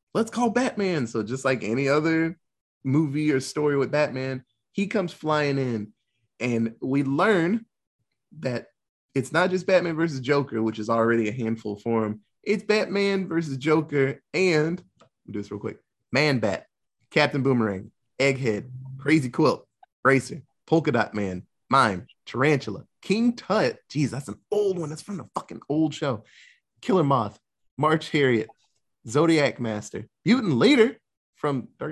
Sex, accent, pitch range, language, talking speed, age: male, American, 115-160 Hz, English, 150 wpm, 20-39